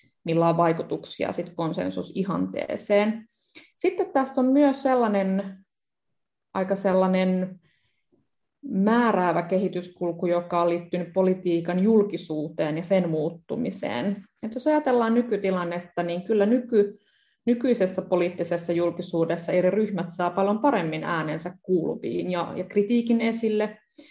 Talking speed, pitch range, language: 105 wpm, 170-205 Hz, English